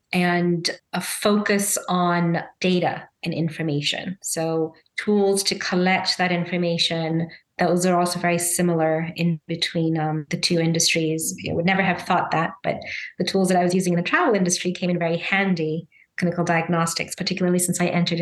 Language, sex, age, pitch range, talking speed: English, female, 30-49, 165-185 Hz, 170 wpm